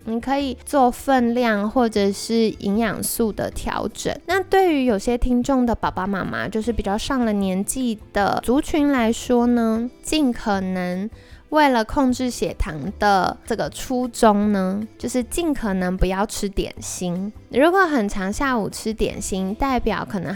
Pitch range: 200-255 Hz